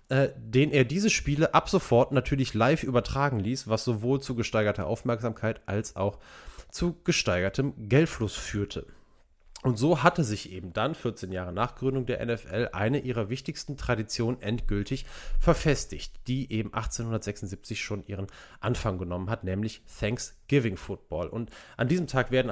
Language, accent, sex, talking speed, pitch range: German, German, male, 150 wpm, 105-135 Hz